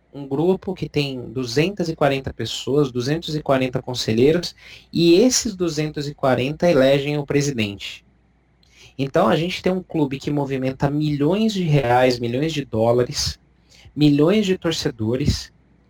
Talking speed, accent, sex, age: 115 wpm, Brazilian, male, 20-39